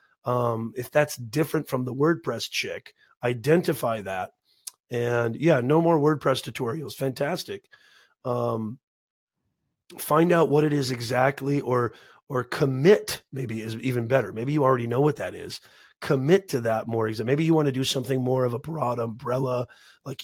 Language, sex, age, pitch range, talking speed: English, male, 30-49, 120-150 Hz, 160 wpm